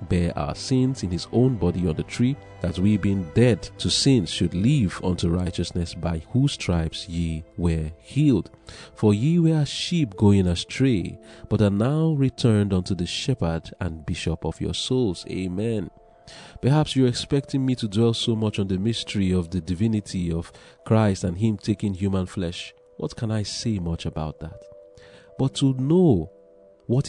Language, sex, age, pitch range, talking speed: English, male, 40-59, 90-120 Hz, 175 wpm